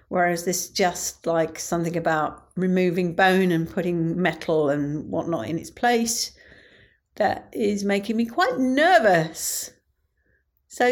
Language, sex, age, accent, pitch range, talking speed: English, female, 40-59, British, 165-235 Hz, 125 wpm